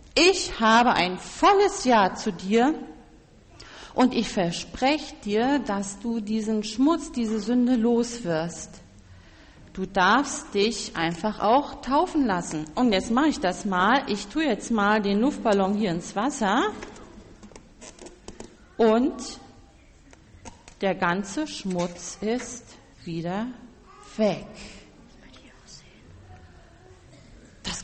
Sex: female